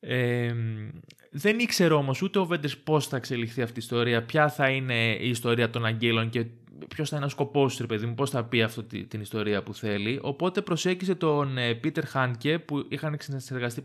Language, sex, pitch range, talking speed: Greek, male, 115-160 Hz, 190 wpm